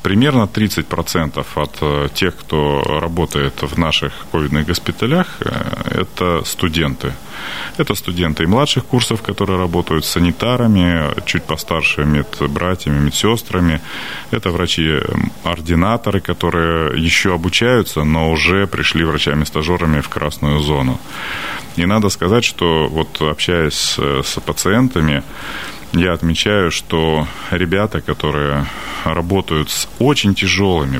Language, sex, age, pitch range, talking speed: Russian, male, 30-49, 75-95 Hz, 105 wpm